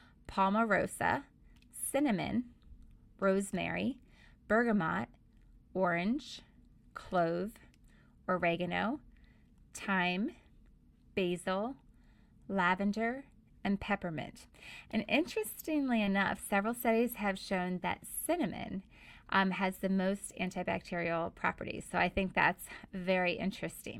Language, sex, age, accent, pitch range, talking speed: English, female, 20-39, American, 180-215 Hz, 85 wpm